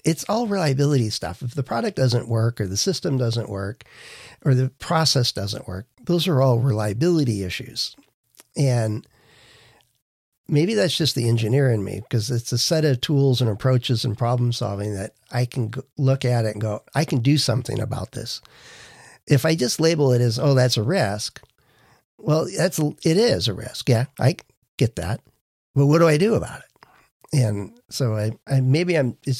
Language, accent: English, American